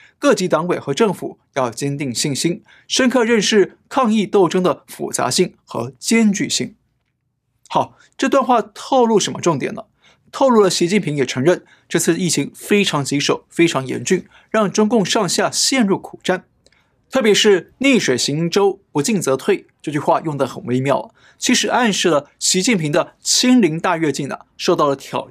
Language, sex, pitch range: Chinese, male, 145-215 Hz